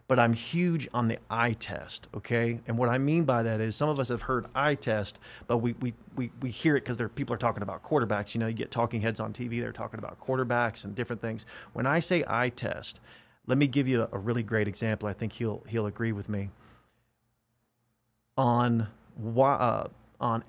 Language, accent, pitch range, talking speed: English, American, 115-145 Hz, 215 wpm